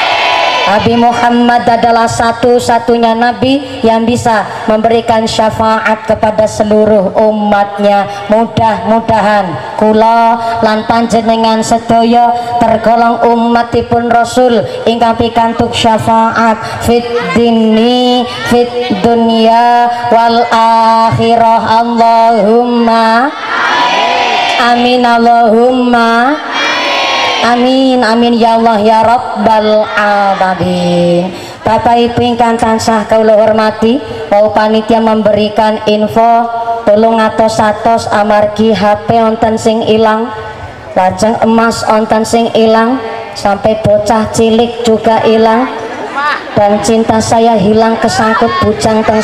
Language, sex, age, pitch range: Indonesian, male, 20-39, 220-235 Hz